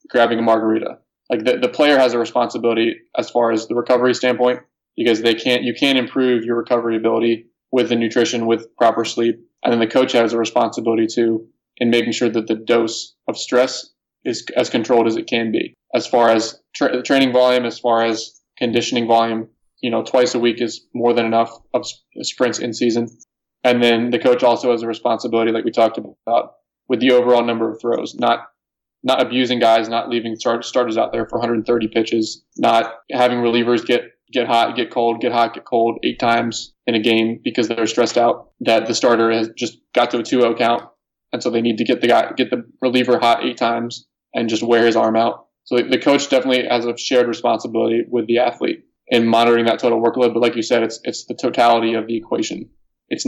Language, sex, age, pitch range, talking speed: English, male, 20-39, 115-125 Hz, 215 wpm